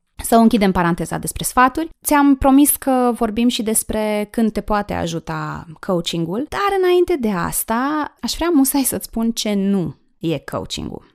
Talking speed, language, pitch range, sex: 155 wpm, Romanian, 170-230 Hz, female